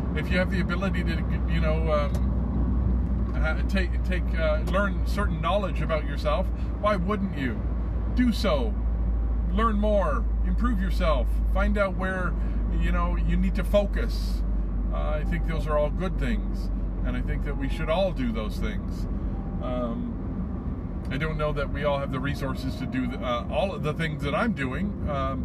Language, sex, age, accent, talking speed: English, male, 40-59, American, 175 wpm